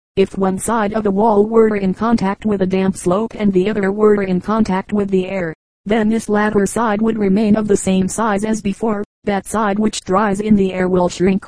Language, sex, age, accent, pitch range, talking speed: English, female, 40-59, American, 190-210 Hz, 225 wpm